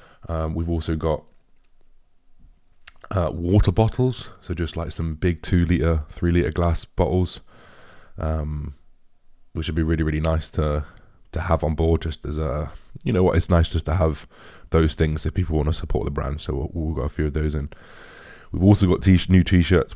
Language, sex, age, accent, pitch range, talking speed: English, male, 20-39, British, 80-90 Hz, 200 wpm